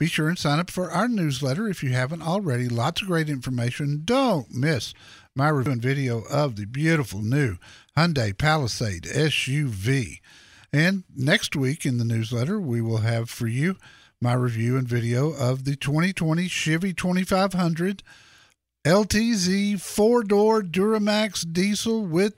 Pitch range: 120-175 Hz